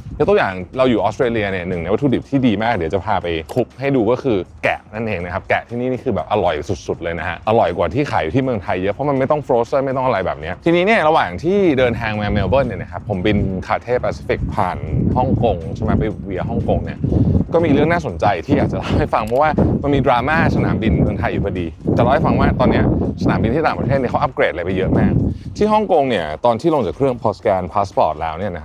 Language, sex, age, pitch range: Thai, male, 20-39, 100-140 Hz